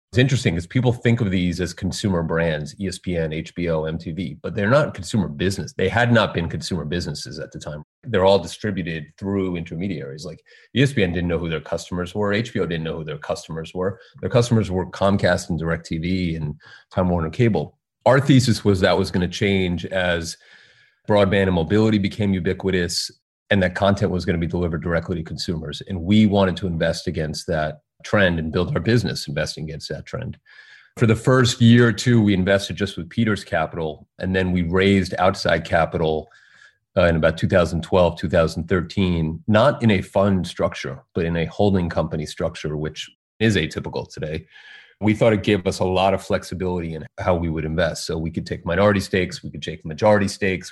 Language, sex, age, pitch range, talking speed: English, male, 30-49, 85-100 Hz, 190 wpm